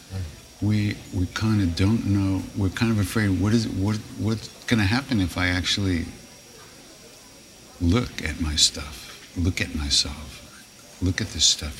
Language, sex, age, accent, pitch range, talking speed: English, male, 60-79, American, 85-105 Hz, 160 wpm